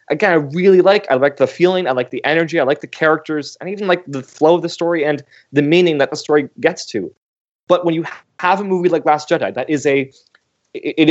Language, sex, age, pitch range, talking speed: English, male, 20-39, 135-175 Hz, 245 wpm